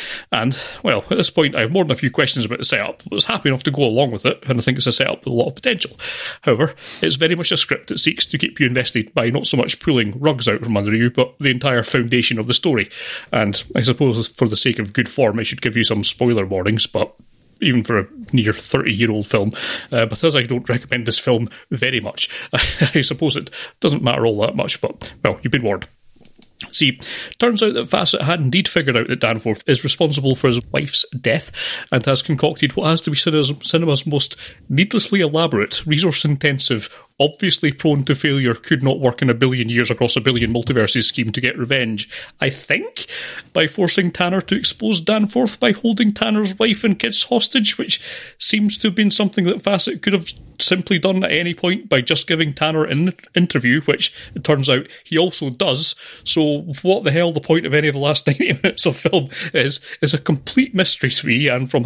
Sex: male